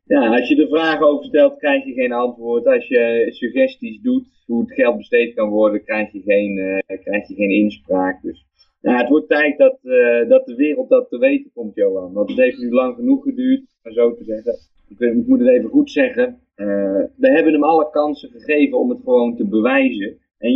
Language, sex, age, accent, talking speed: Dutch, male, 20-39, Dutch, 220 wpm